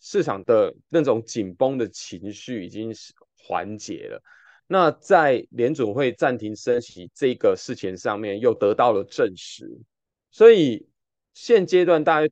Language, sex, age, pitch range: Chinese, male, 20-39, 115-180 Hz